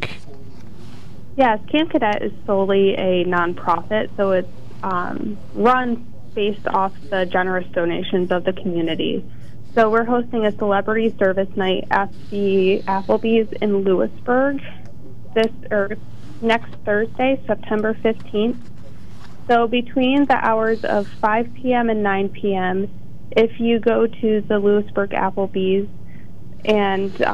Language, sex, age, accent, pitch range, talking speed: English, female, 20-39, American, 185-220 Hz, 120 wpm